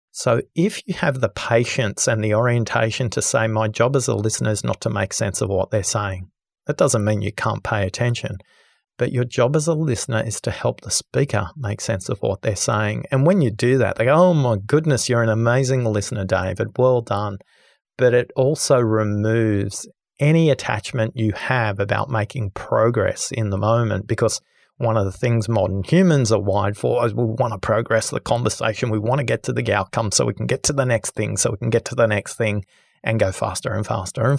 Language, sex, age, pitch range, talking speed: English, male, 40-59, 105-130 Hz, 220 wpm